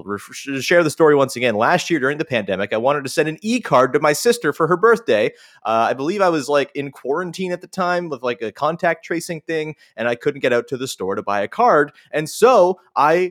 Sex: male